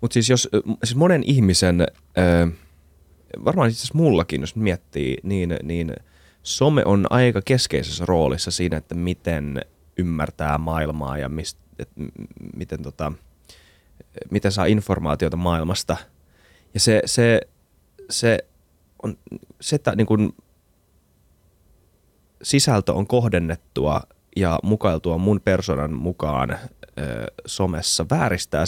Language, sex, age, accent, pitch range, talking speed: Finnish, male, 30-49, native, 80-105 Hz, 105 wpm